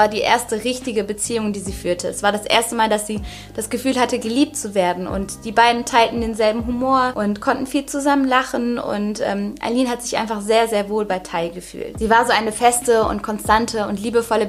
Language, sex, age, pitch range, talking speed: German, female, 20-39, 205-245 Hz, 220 wpm